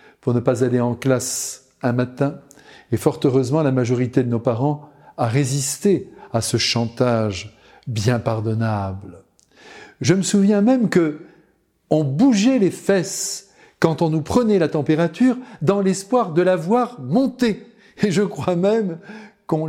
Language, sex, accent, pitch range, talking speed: French, male, French, 120-165 Hz, 145 wpm